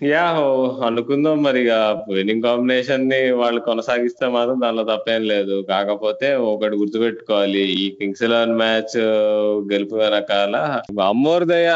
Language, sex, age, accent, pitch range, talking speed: Telugu, male, 20-39, native, 95-125 Hz, 110 wpm